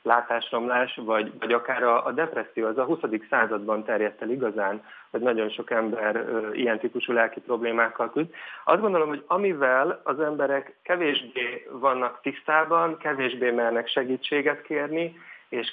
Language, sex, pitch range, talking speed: Hungarian, male, 115-135 Hz, 135 wpm